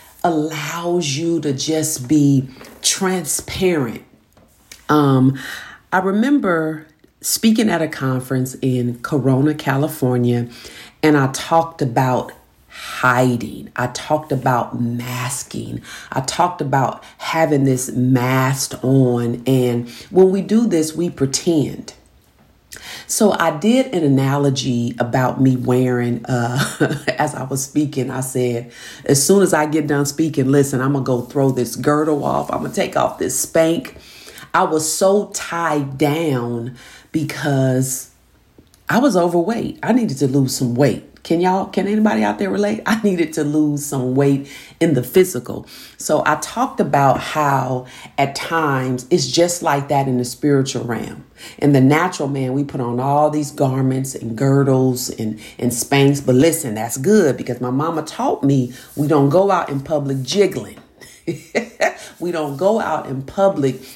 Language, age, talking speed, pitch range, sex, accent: English, 40-59, 150 wpm, 130-160 Hz, female, American